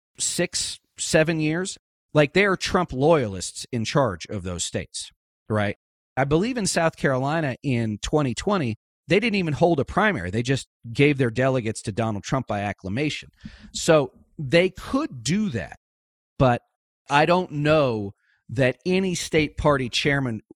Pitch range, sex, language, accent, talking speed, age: 105-150 Hz, male, English, American, 150 wpm, 40-59